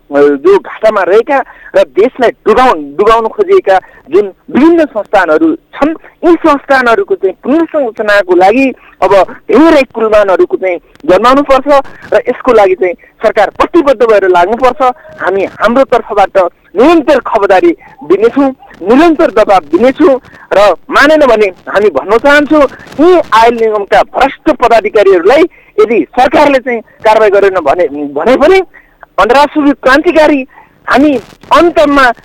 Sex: male